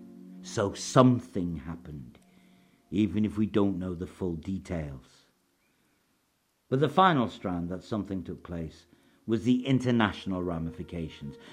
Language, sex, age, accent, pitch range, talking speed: English, male, 50-69, British, 95-140 Hz, 120 wpm